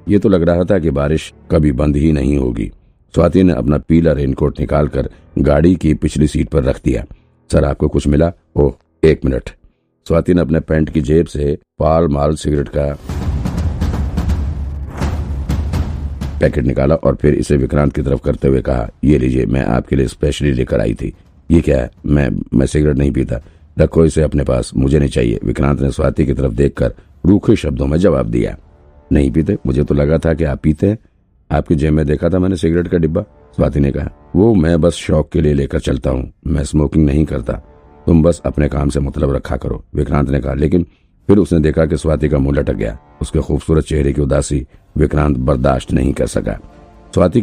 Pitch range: 70-80 Hz